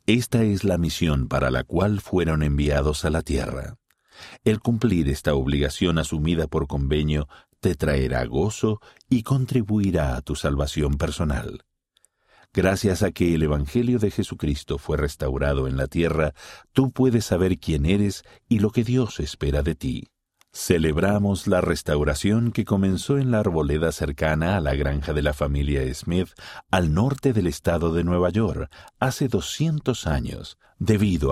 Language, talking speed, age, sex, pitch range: Spanish, 150 wpm, 50-69, male, 75-105 Hz